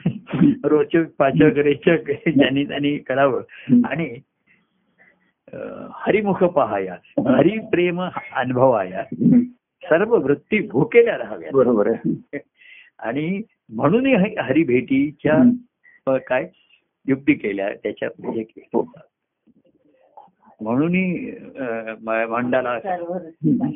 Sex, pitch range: male, 120-180 Hz